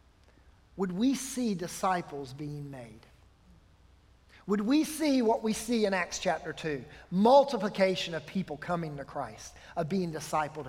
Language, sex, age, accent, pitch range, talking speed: English, male, 50-69, American, 145-235 Hz, 140 wpm